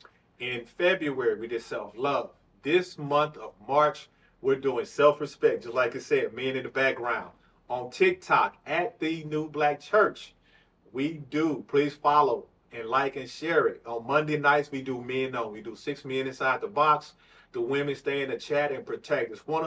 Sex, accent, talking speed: male, American, 190 wpm